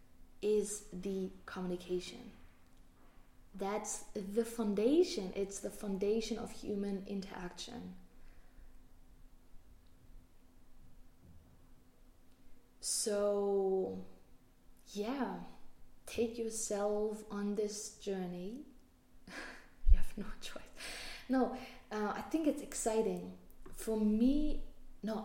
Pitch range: 180-210 Hz